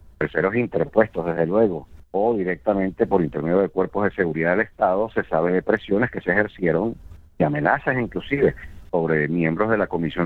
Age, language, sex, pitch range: 50-69, Spanish, male, 85-115 Hz